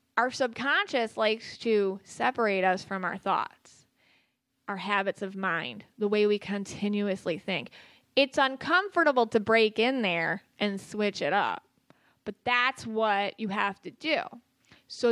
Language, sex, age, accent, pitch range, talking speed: English, female, 20-39, American, 195-260 Hz, 145 wpm